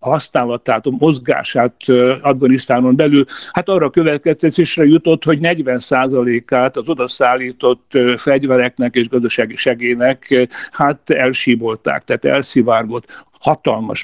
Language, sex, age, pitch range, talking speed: Hungarian, male, 60-79, 125-145 Hz, 105 wpm